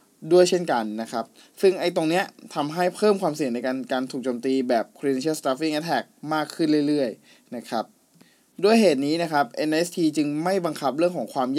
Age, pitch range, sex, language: 20-39, 130-170 Hz, male, Thai